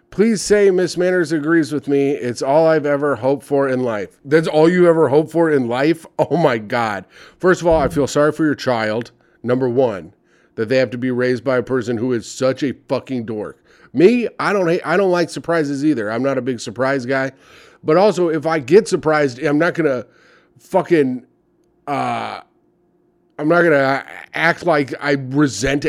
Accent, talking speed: American, 200 wpm